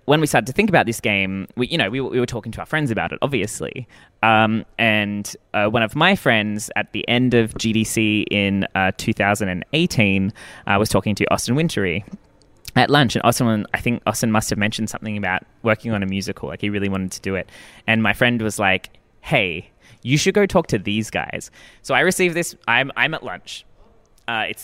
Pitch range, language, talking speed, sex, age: 105-130 Hz, English, 215 wpm, male, 20-39